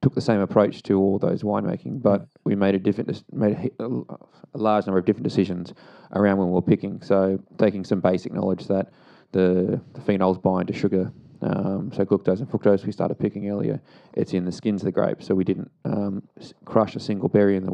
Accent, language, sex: Australian, English, male